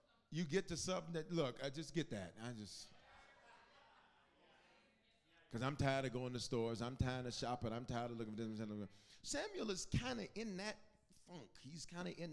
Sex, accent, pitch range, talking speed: male, American, 120-180 Hz, 195 wpm